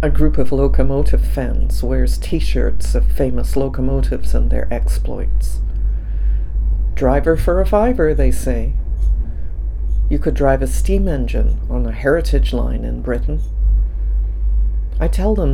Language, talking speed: English, 130 wpm